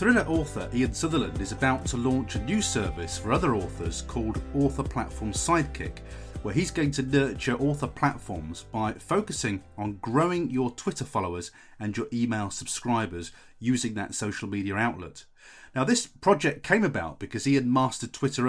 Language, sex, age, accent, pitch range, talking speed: English, male, 30-49, British, 115-145 Hz, 165 wpm